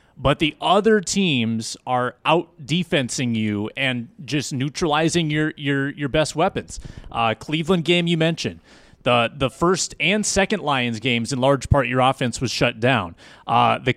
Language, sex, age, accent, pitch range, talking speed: English, male, 30-49, American, 120-160 Hz, 160 wpm